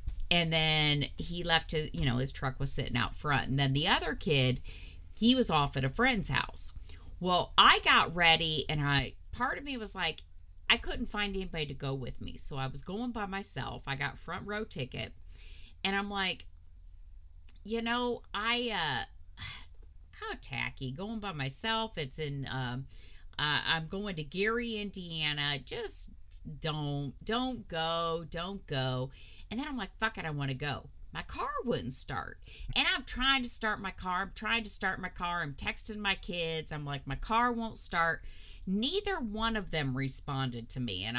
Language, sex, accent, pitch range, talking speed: English, female, American, 130-205 Hz, 185 wpm